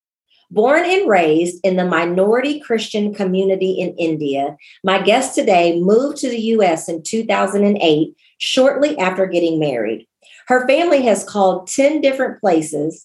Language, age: English, 40-59